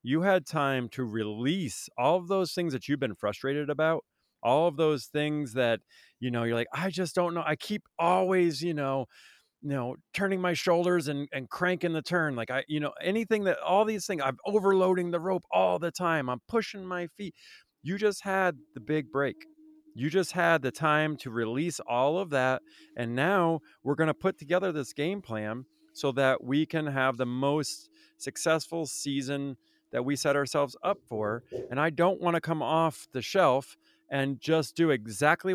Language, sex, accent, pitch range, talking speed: English, male, American, 130-175 Hz, 195 wpm